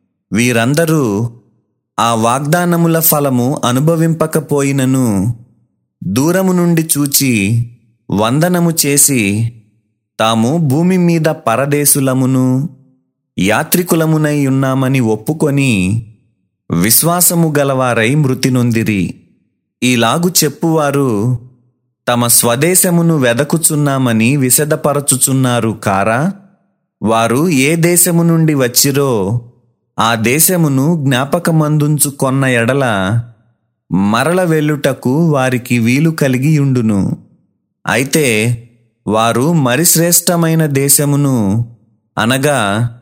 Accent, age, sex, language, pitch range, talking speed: native, 30-49, male, Telugu, 115-155 Hz, 65 wpm